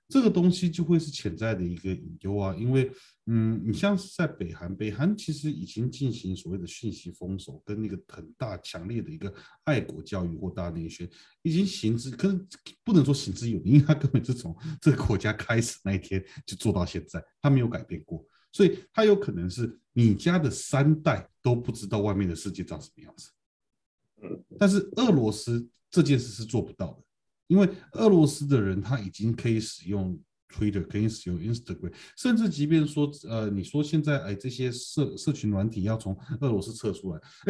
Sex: male